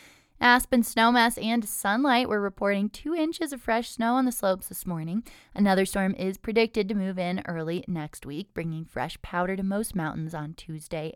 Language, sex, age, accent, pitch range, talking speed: English, female, 20-39, American, 165-230 Hz, 185 wpm